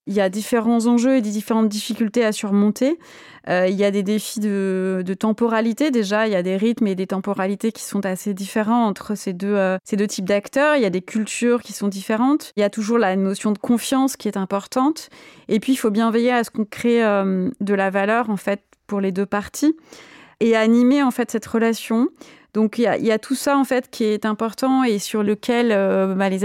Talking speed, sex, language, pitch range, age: 220 wpm, female, French, 200-230 Hz, 20-39